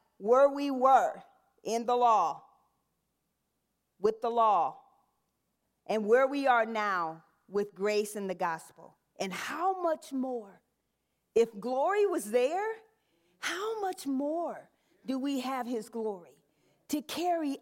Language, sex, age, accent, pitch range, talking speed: English, female, 40-59, American, 220-310 Hz, 125 wpm